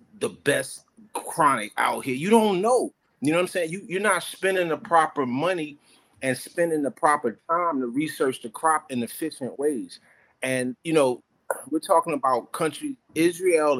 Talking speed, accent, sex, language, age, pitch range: 180 wpm, American, male, English, 30-49, 130-170 Hz